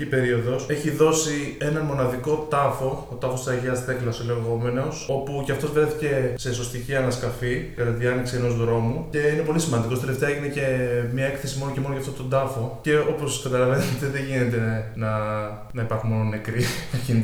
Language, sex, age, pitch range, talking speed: Greek, male, 20-39, 120-140 Hz, 190 wpm